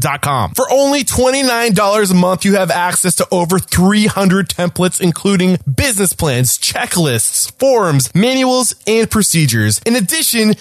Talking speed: 130 wpm